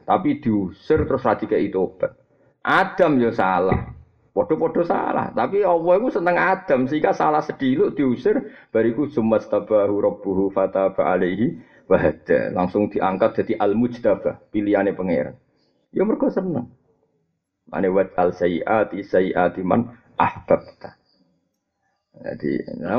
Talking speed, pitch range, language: 110 wpm, 95-140 Hz, Indonesian